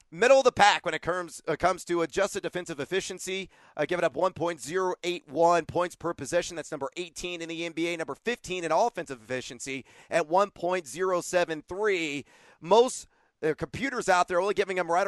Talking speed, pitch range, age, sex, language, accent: 195 wpm, 160-200 Hz, 30-49, male, English, American